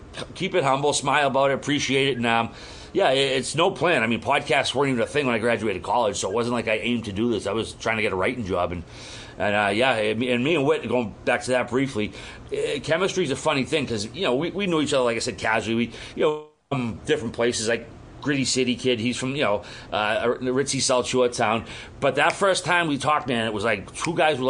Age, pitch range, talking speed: 30-49, 110-135 Hz, 255 wpm